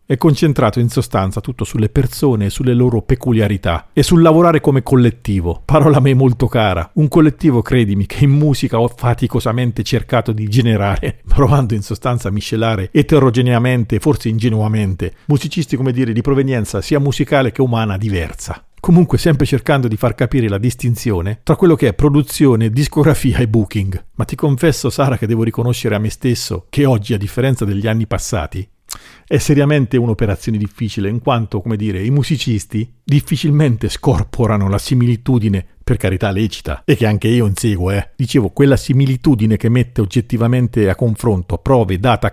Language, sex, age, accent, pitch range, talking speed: Italian, male, 50-69, native, 105-135 Hz, 165 wpm